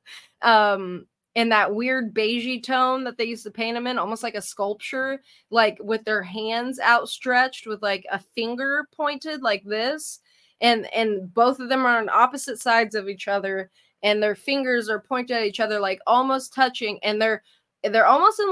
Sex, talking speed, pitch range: female, 185 wpm, 205-250 Hz